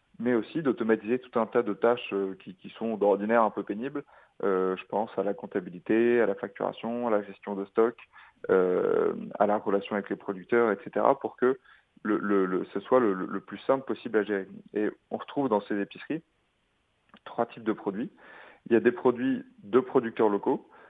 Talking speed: 200 wpm